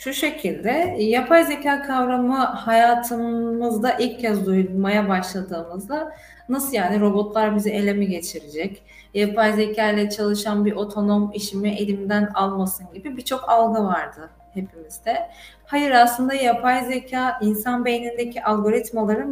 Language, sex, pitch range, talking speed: Turkish, female, 205-250 Hz, 115 wpm